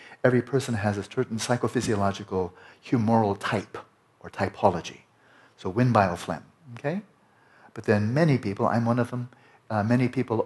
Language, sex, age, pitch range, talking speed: English, male, 60-79, 95-115 Hz, 145 wpm